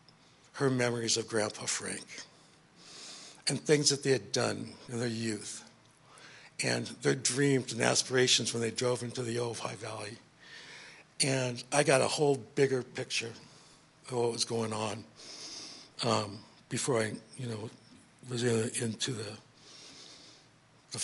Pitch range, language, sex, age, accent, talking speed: 125-155 Hz, English, male, 60-79, American, 140 wpm